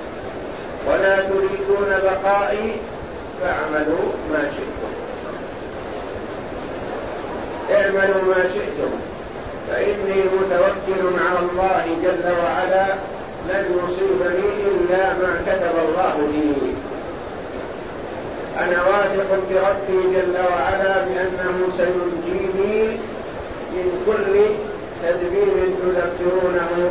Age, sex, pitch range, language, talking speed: 50-69, male, 175-195 Hz, Arabic, 75 wpm